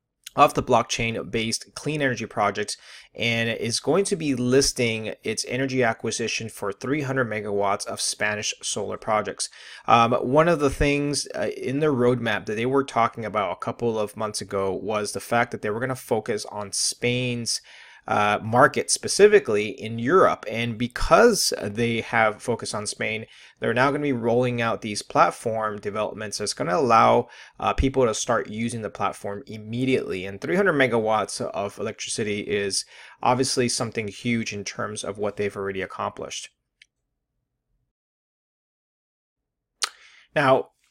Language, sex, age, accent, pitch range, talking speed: English, male, 30-49, American, 110-135 Hz, 155 wpm